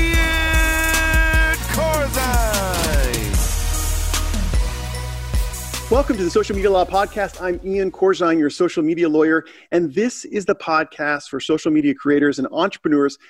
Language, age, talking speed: English, 40-59, 115 wpm